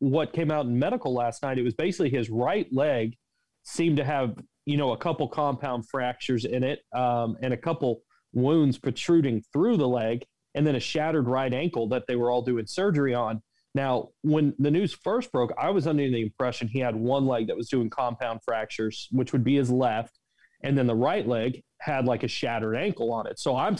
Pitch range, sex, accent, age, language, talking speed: 120-155 Hz, male, American, 30-49, English, 215 wpm